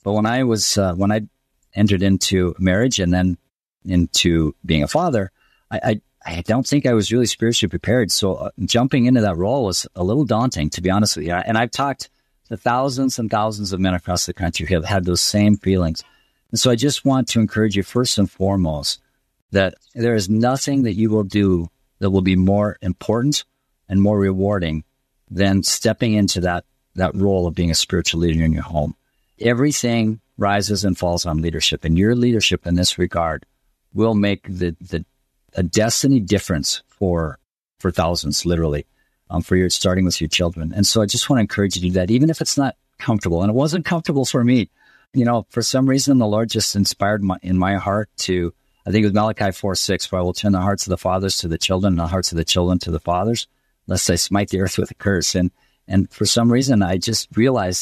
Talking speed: 220 wpm